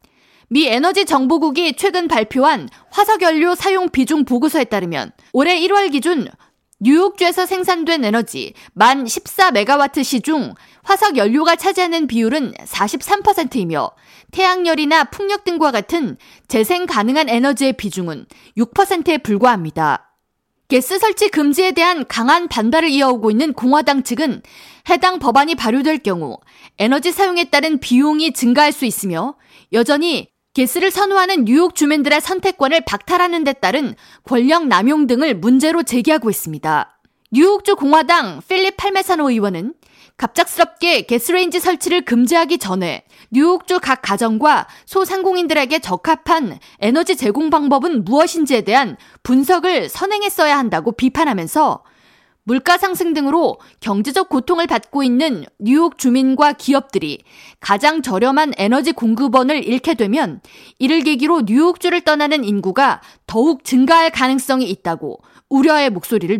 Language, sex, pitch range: Korean, female, 245-345 Hz